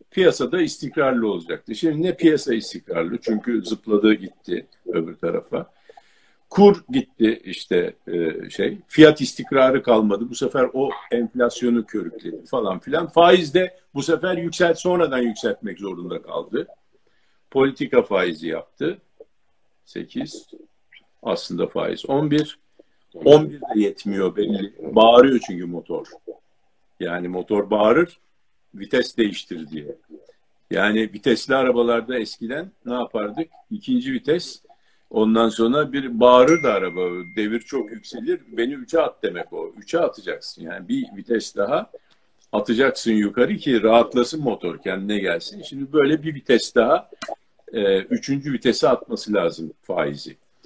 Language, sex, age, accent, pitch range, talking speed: Turkish, male, 50-69, native, 110-180 Hz, 120 wpm